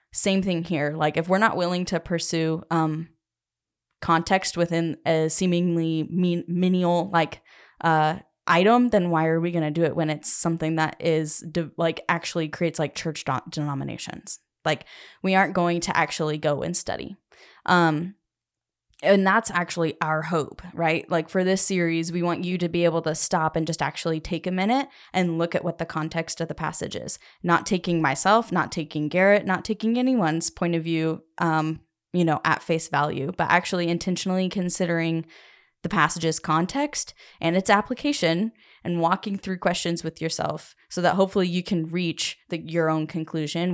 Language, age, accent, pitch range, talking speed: English, 10-29, American, 160-185 Hz, 175 wpm